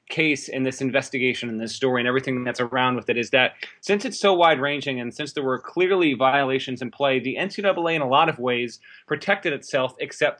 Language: English